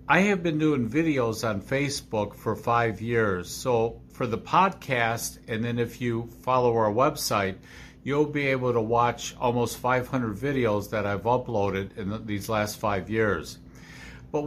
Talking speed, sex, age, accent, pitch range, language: 160 wpm, male, 50-69, American, 105-135 Hz, English